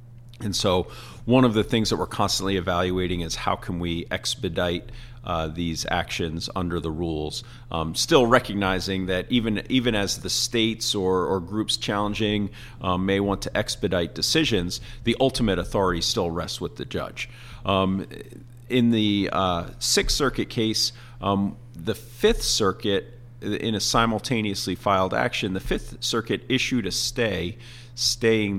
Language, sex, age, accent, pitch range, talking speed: English, male, 40-59, American, 95-120 Hz, 150 wpm